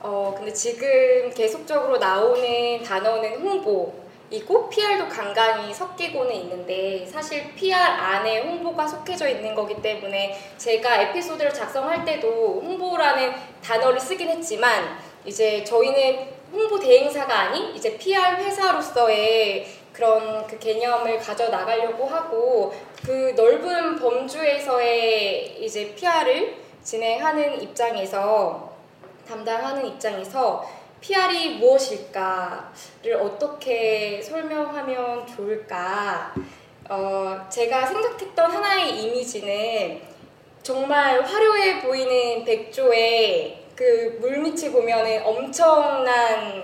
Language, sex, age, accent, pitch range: Korean, female, 20-39, native, 220-365 Hz